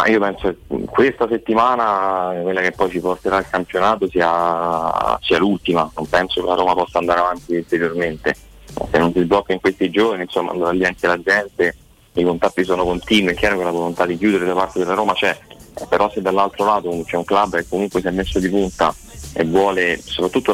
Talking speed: 205 wpm